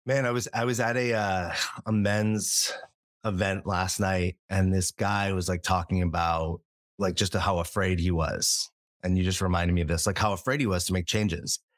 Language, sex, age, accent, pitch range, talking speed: English, male, 30-49, American, 90-110 Hz, 210 wpm